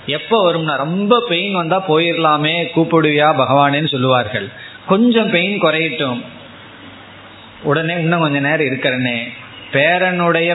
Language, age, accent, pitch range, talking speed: Tamil, 20-39, native, 130-175 Hz, 100 wpm